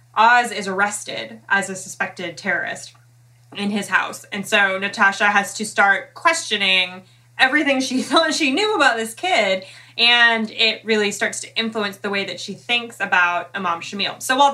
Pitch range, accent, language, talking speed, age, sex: 175-210 Hz, American, English, 170 wpm, 20-39, female